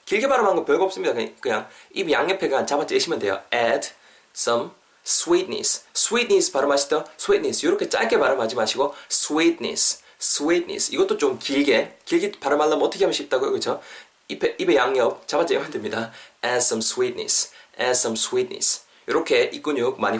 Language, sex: Korean, male